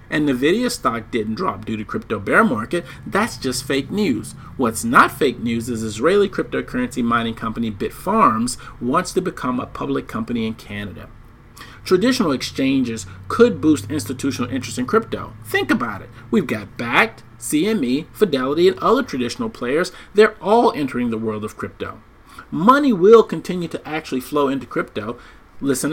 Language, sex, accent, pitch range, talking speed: English, male, American, 125-195 Hz, 155 wpm